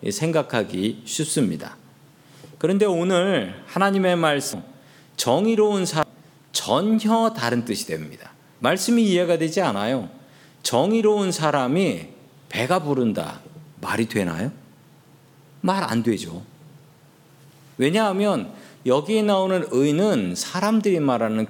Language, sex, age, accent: Korean, male, 40-59, native